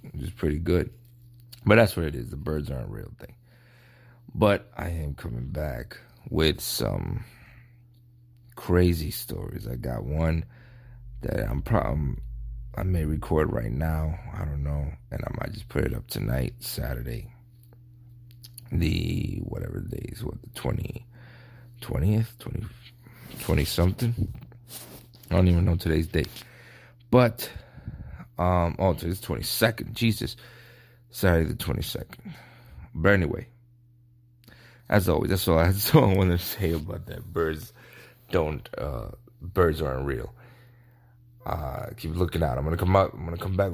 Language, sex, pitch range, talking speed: English, male, 80-120 Hz, 150 wpm